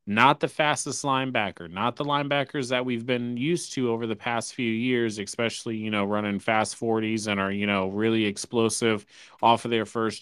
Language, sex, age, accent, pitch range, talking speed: English, male, 30-49, American, 100-120 Hz, 195 wpm